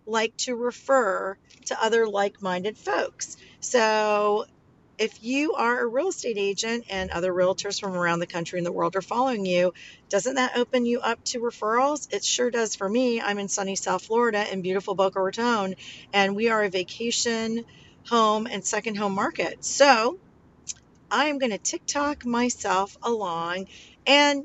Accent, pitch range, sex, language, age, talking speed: American, 190-240 Hz, female, English, 40-59, 165 wpm